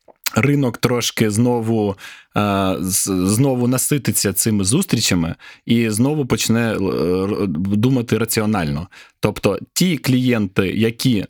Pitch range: 105-130 Hz